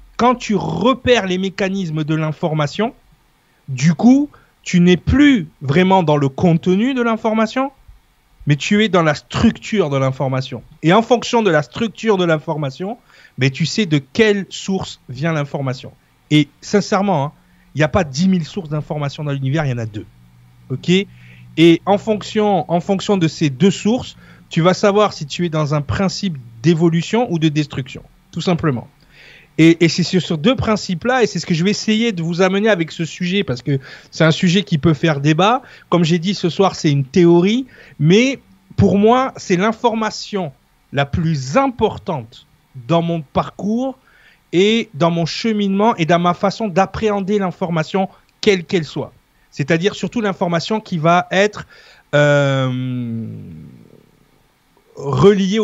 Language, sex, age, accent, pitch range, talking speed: French, male, 30-49, French, 150-205 Hz, 165 wpm